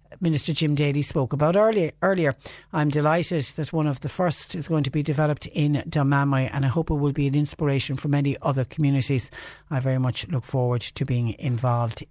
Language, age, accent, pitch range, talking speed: English, 60-79, Irish, 130-155 Hz, 205 wpm